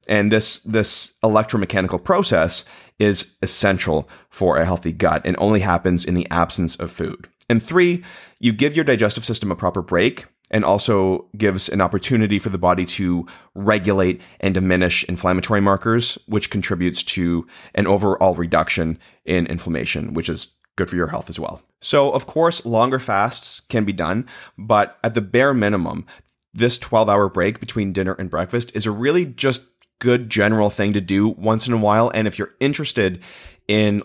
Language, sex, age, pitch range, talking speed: English, male, 30-49, 90-115 Hz, 175 wpm